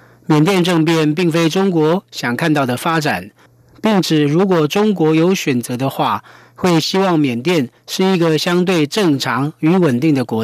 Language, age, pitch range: Chinese, 40-59, 135-180 Hz